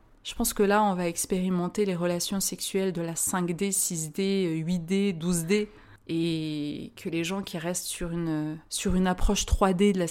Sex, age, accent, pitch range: female, 30-49, French, 175-215 Hz